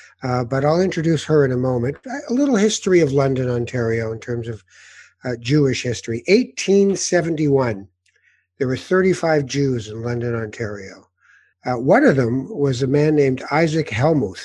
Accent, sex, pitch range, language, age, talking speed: American, male, 125-160 Hz, English, 60-79, 160 wpm